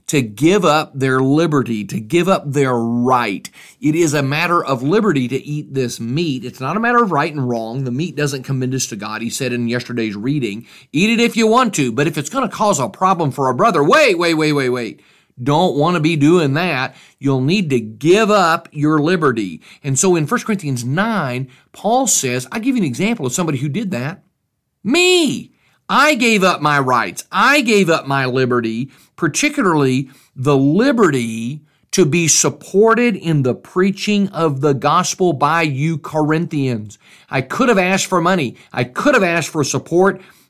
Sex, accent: male, American